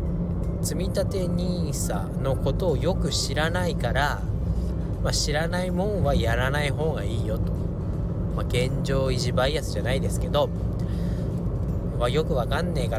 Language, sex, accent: Japanese, male, native